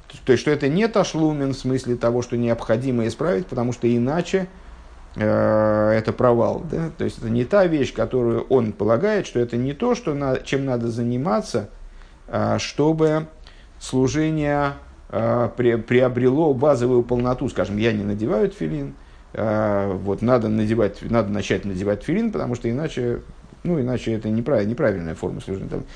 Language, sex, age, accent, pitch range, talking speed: Russian, male, 50-69, native, 100-130 Hz, 155 wpm